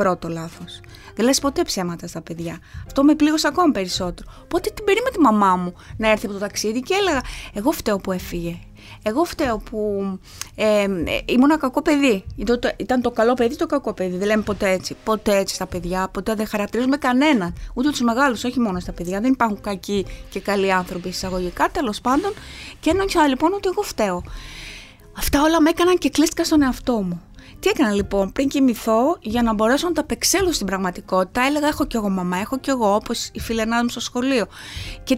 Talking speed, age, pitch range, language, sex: 200 wpm, 20-39, 200-295 Hz, Greek, female